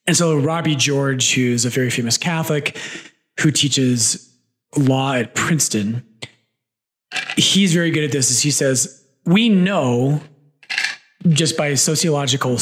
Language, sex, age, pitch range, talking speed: English, male, 30-49, 135-175 Hz, 130 wpm